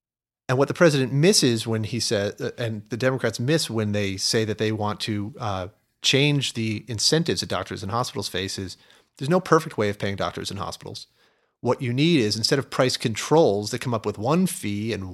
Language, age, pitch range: English, 30-49, 105-130 Hz